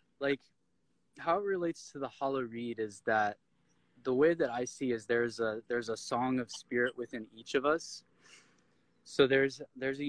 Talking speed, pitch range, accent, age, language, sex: 185 wpm, 115-140 Hz, American, 20-39, English, male